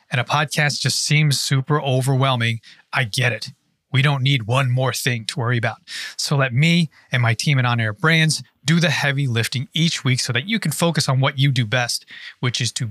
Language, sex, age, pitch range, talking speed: English, male, 30-49, 120-155 Hz, 225 wpm